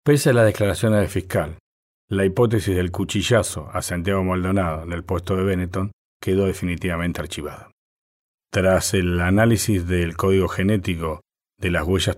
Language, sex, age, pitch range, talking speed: Spanish, male, 40-59, 85-100 Hz, 150 wpm